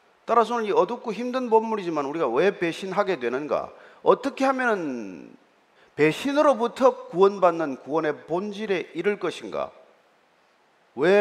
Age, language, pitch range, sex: 40-59, Korean, 165-245 Hz, male